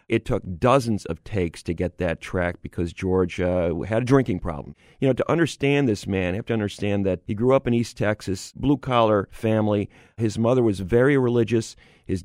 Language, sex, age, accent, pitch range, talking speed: English, male, 40-59, American, 95-120 Hz, 200 wpm